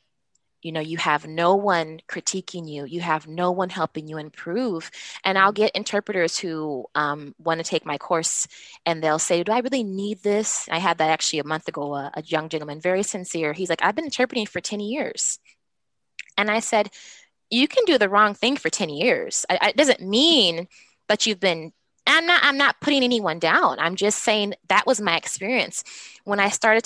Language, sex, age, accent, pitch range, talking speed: English, female, 20-39, American, 160-210 Hz, 205 wpm